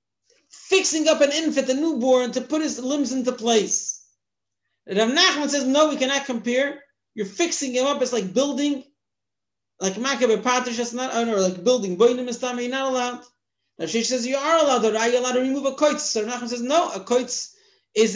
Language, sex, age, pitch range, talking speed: English, male, 40-59, 215-280 Hz, 180 wpm